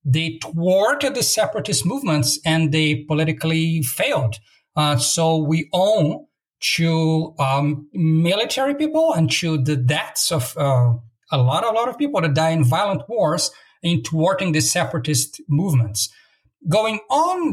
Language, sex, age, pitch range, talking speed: English, male, 50-69, 145-185 Hz, 140 wpm